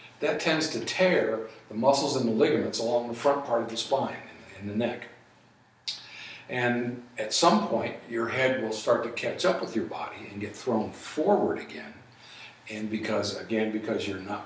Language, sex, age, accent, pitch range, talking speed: English, male, 50-69, American, 110-145 Hz, 185 wpm